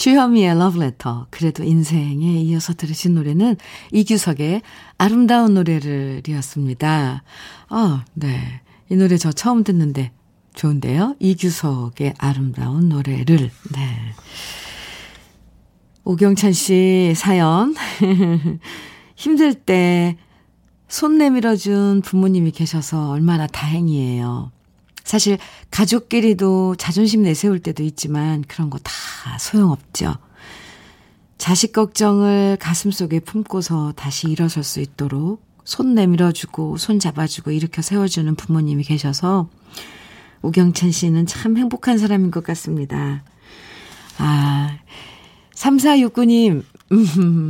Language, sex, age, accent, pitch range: Korean, female, 50-69, native, 150-200 Hz